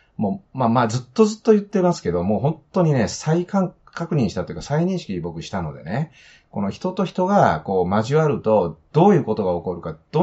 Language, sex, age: Japanese, male, 30-49